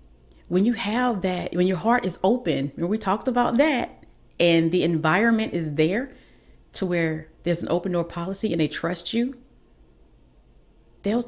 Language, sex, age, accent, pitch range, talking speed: English, female, 40-59, American, 140-195 Hz, 165 wpm